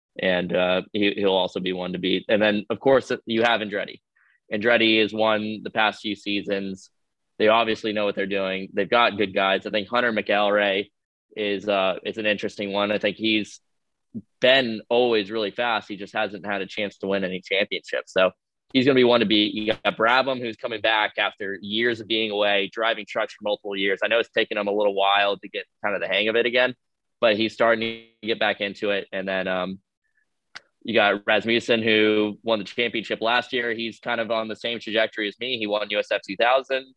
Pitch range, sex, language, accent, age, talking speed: 100-115 Hz, male, English, American, 20-39, 215 wpm